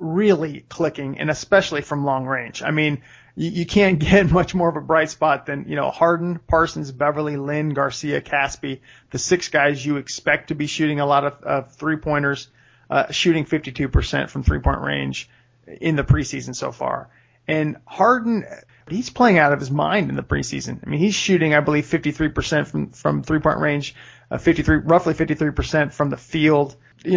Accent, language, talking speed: American, English, 190 wpm